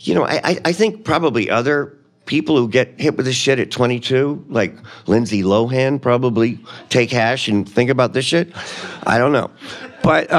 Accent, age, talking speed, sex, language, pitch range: American, 50-69, 180 wpm, male, English, 105-135 Hz